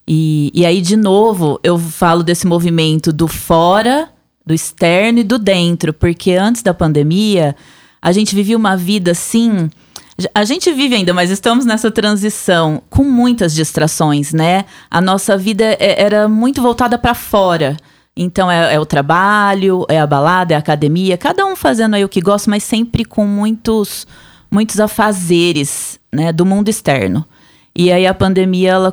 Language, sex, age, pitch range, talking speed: Portuguese, female, 20-39, 170-225 Hz, 165 wpm